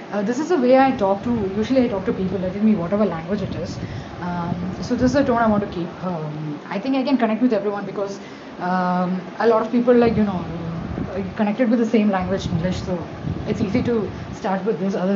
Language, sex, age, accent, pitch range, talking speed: English, female, 10-29, Indian, 180-225 Hz, 240 wpm